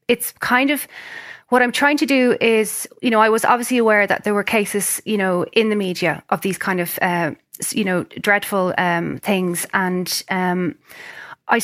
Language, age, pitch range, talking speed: English, 20-39, 190-220 Hz, 190 wpm